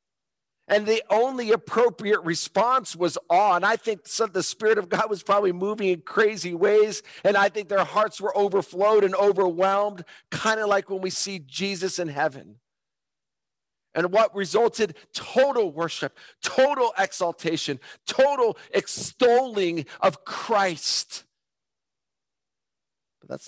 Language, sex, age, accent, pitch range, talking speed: English, male, 50-69, American, 155-200 Hz, 130 wpm